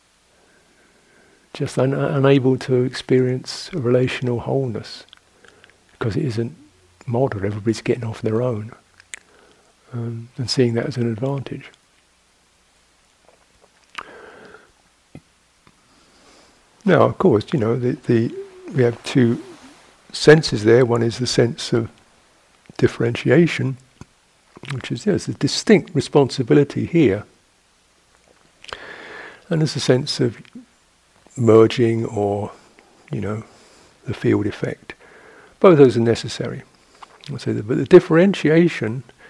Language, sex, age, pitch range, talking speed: English, male, 60-79, 115-150 Hz, 105 wpm